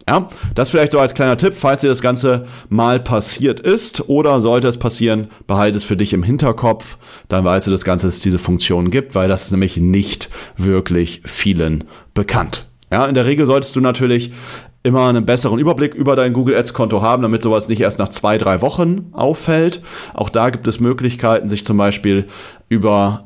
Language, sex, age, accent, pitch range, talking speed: German, male, 30-49, German, 100-120 Hz, 200 wpm